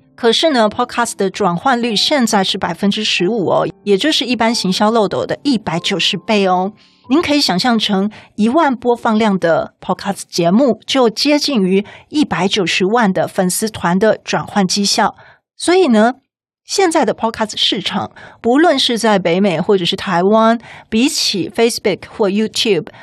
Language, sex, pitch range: Chinese, female, 190-240 Hz